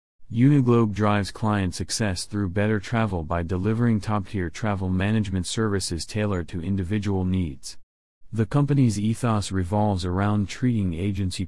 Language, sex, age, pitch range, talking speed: English, male, 40-59, 95-115 Hz, 125 wpm